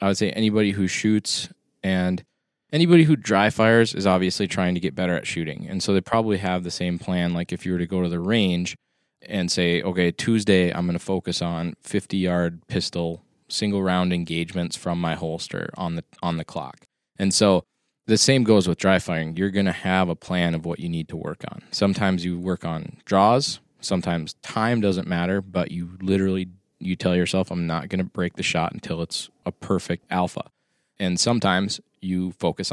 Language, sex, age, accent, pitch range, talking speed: English, male, 20-39, American, 90-100 Hz, 200 wpm